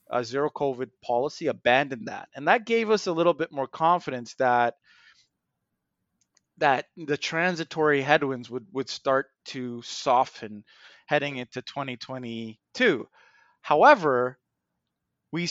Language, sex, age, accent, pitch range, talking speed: English, male, 20-39, American, 125-160 Hz, 115 wpm